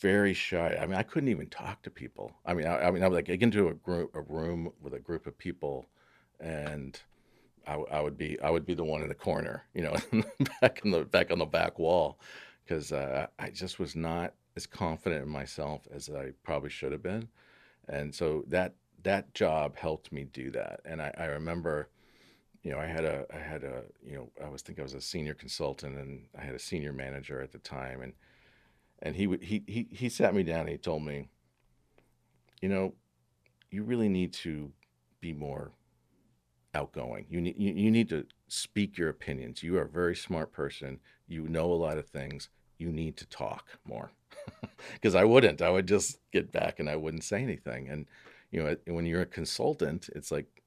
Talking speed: 210 wpm